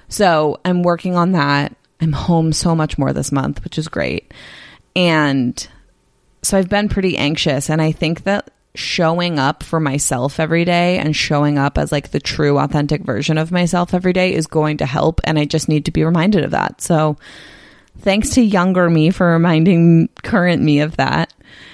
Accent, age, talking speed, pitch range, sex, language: American, 20-39, 190 wpm, 145-175 Hz, female, English